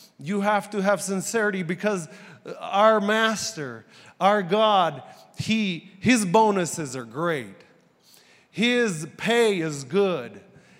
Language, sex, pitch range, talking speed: English, male, 180-220 Hz, 105 wpm